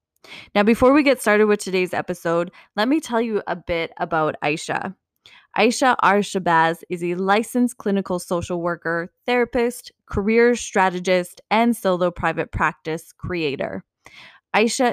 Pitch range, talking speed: 175-220 Hz, 135 wpm